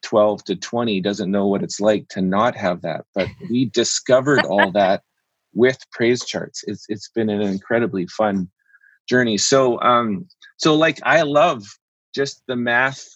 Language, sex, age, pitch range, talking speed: English, male, 30-49, 105-120 Hz, 165 wpm